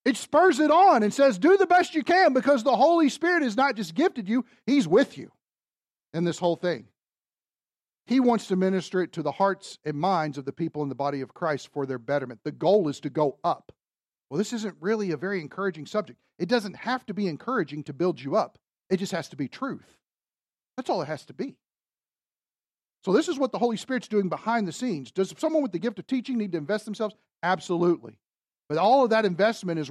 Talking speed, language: 225 wpm, English